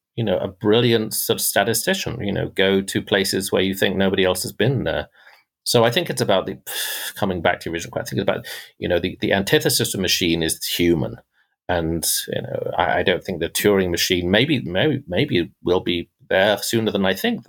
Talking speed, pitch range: 225 wpm, 95-130 Hz